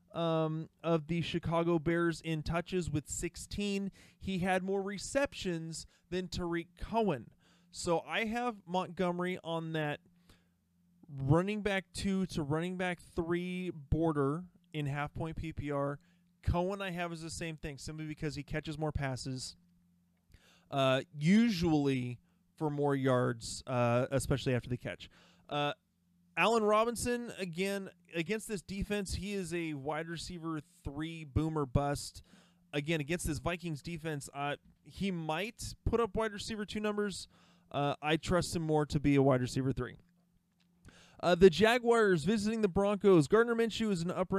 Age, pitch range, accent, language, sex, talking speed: 30-49, 145-185 Hz, American, English, male, 145 wpm